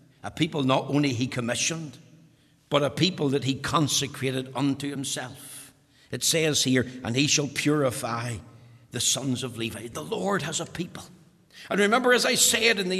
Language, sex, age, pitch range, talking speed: English, male, 60-79, 160-225 Hz, 170 wpm